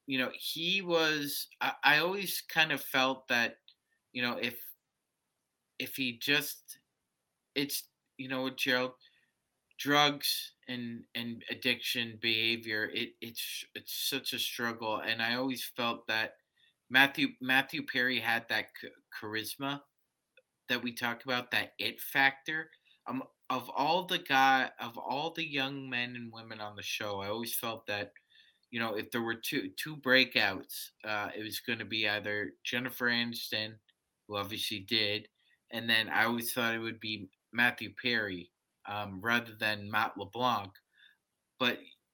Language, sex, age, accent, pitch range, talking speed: English, male, 30-49, American, 110-135 Hz, 150 wpm